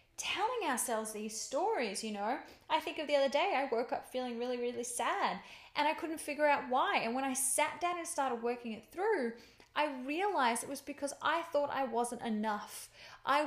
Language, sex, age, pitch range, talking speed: English, female, 10-29, 225-295 Hz, 205 wpm